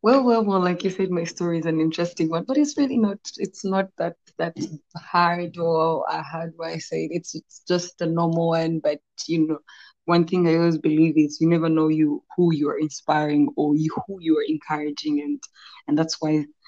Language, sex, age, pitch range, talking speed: English, female, 20-39, 160-180 Hz, 210 wpm